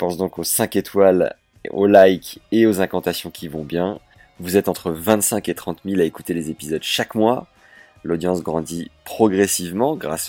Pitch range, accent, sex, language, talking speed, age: 85-100 Hz, French, male, French, 175 wpm, 30-49